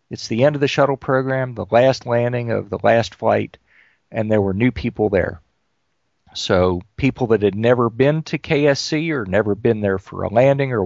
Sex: male